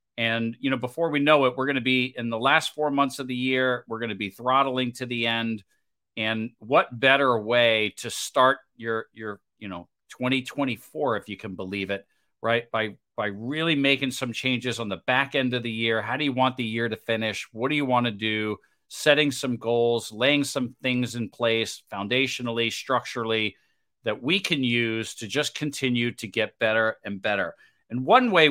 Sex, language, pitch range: male, English, 115-135 Hz